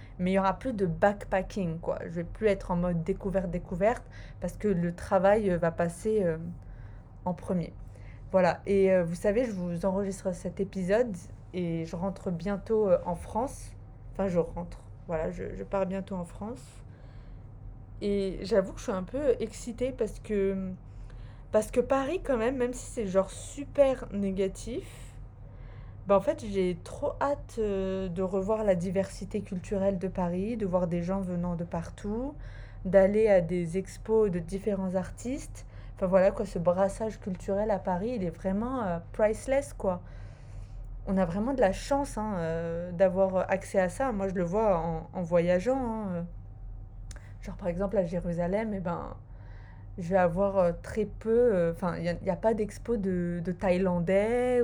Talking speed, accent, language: 175 wpm, French, French